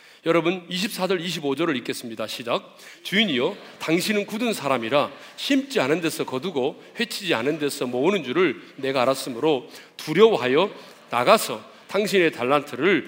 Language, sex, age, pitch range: Korean, male, 40-59, 125-190 Hz